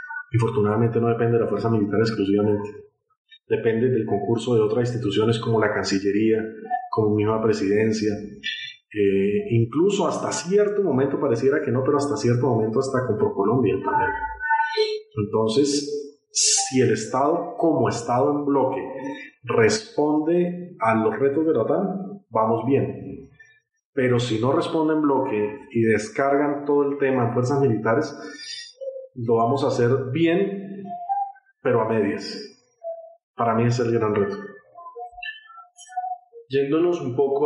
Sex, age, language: male, 30-49, Spanish